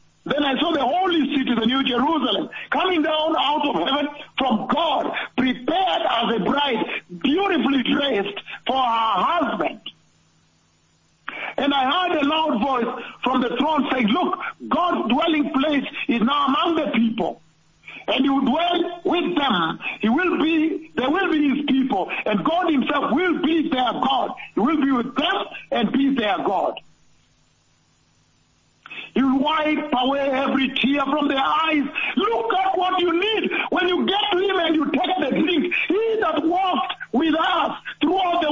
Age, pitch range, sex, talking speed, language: 50-69, 250-335 Hz, male, 155 wpm, English